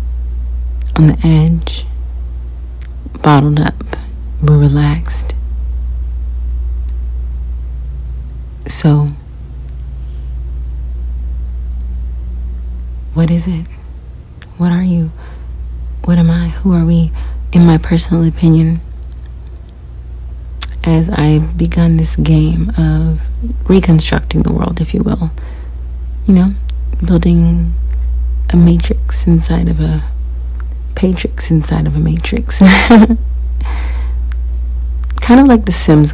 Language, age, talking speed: English, 30-49, 90 wpm